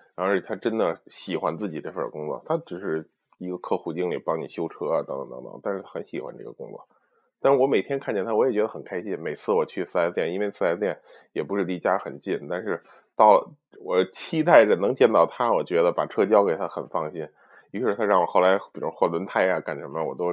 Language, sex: Chinese, male